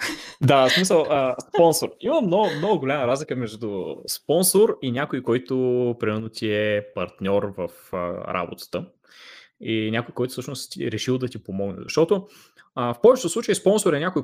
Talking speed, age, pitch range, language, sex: 150 wpm, 20-39, 110-150 Hz, Bulgarian, male